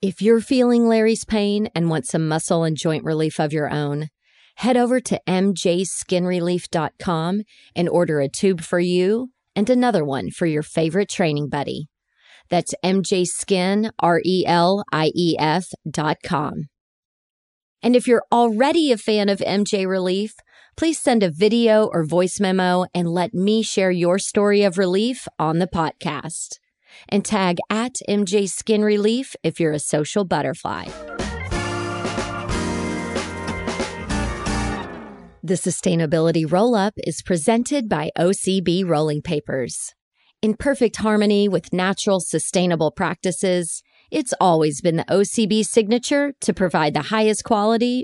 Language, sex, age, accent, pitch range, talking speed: English, female, 30-49, American, 160-210 Hz, 130 wpm